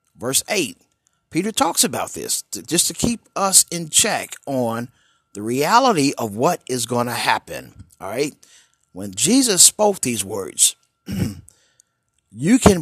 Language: English